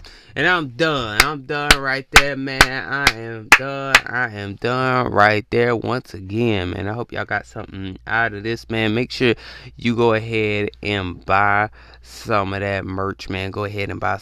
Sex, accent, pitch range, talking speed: male, American, 95-120 Hz, 185 wpm